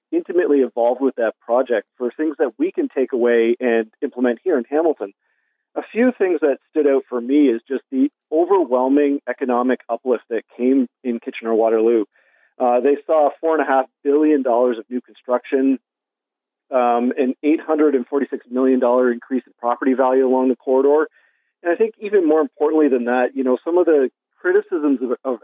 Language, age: English, 40-59